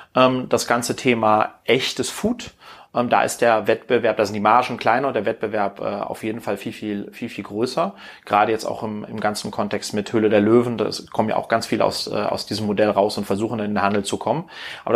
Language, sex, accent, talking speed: German, male, German, 220 wpm